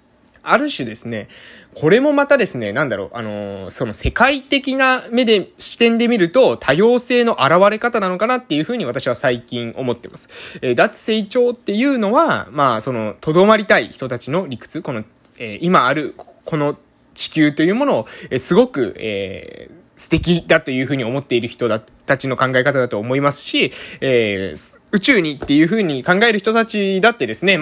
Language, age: Japanese, 20-39